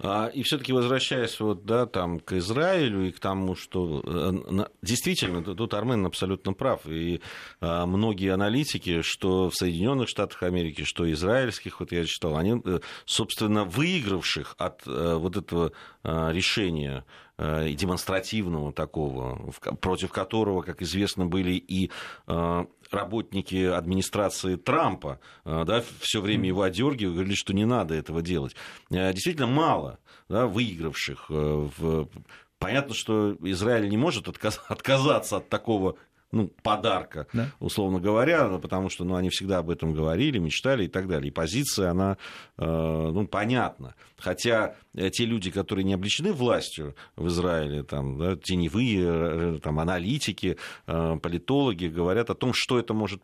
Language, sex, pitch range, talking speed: Russian, male, 85-110 Hz, 125 wpm